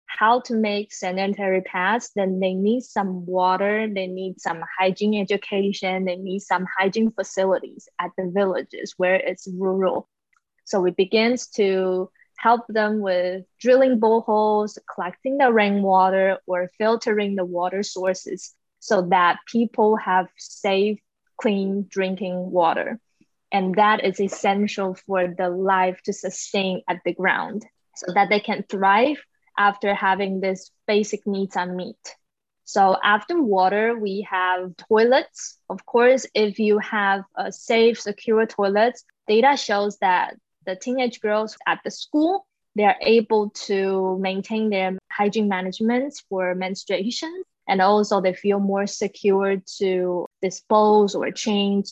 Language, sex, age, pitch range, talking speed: English, female, 20-39, 190-215 Hz, 140 wpm